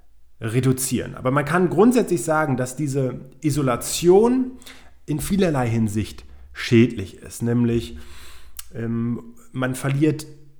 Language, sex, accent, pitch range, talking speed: German, male, German, 115-140 Hz, 95 wpm